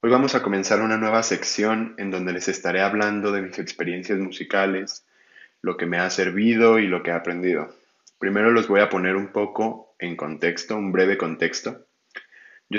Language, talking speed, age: Spanish, 185 wpm, 20-39